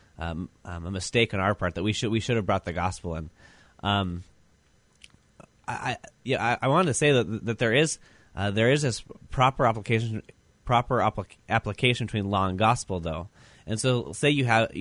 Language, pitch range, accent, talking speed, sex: English, 95-120 Hz, American, 200 wpm, male